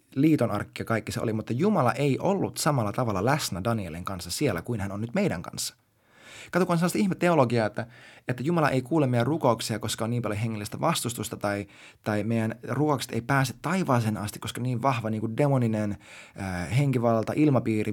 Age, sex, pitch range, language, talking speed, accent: 20-39, male, 110-155 Hz, Finnish, 185 wpm, native